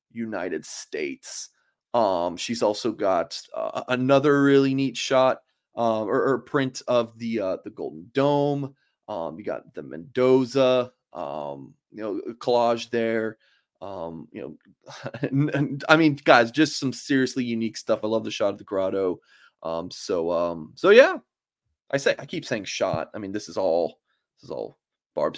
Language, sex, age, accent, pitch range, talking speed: English, male, 30-49, American, 115-155 Hz, 165 wpm